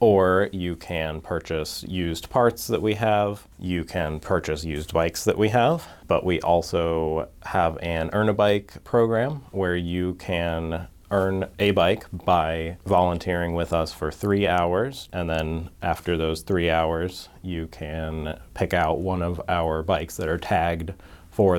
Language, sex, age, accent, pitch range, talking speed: English, male, 30-49, American, 80-95 Hz, 160 wpm